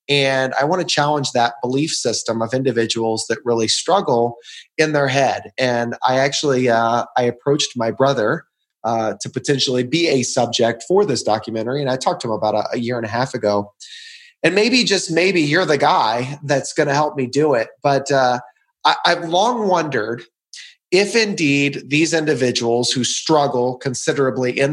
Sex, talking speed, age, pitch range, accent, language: male, 175 wpm, 30-49, 120-150 Hz, American, English